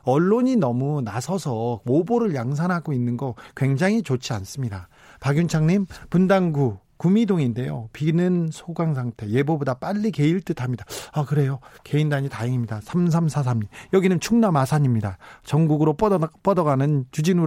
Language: Korean